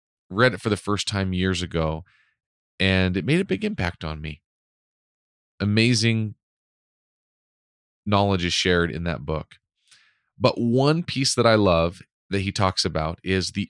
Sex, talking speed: male, 155 wpm